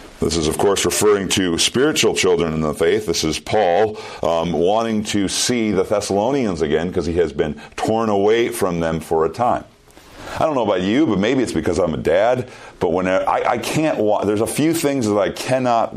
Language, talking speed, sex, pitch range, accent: English, 215 wpm, male, 85-115 Hz, American